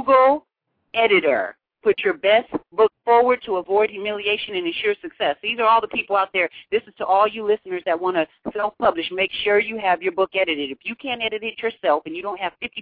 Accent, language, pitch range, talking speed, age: American, English, 180-245 Hz, 225 wpm, 40-59